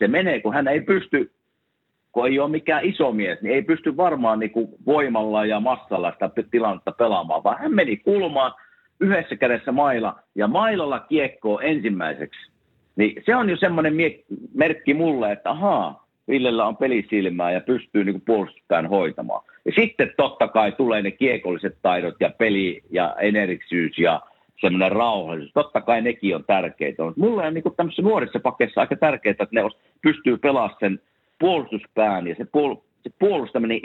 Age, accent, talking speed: 50-69, native, 155 wpm